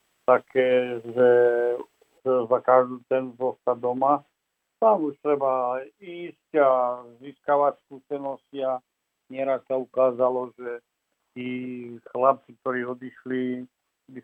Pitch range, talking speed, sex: 125-135 Hz, 100 wpm, male